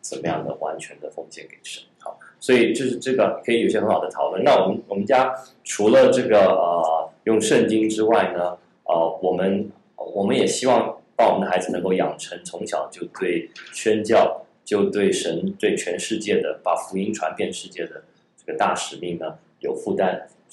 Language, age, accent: Chinese, 20-39, native